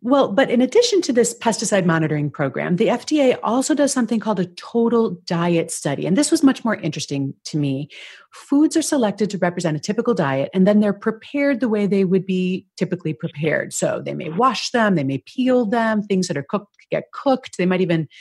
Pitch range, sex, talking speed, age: 170-235 Hz, female, 210 wpm, 30-49